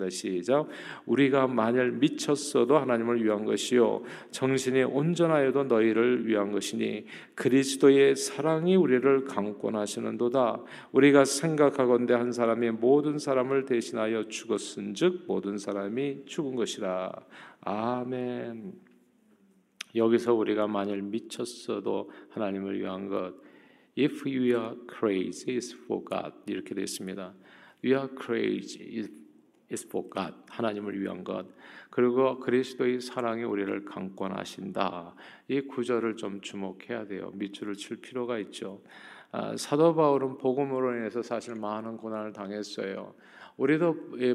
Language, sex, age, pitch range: Korean, male, 50-69, 105-135 Hz